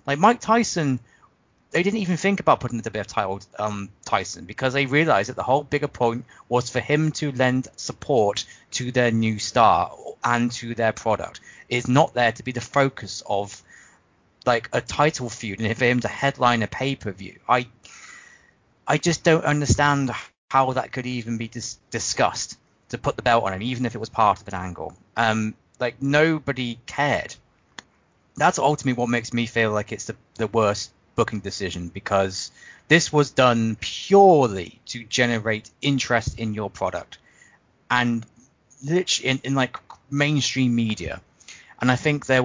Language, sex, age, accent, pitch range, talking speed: English, male, 20-39, British, 105-135 Hz, 170 wpm